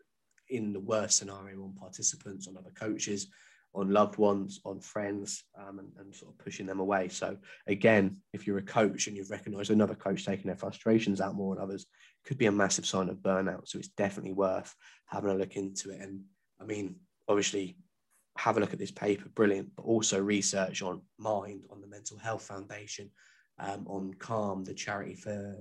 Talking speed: 195 wpm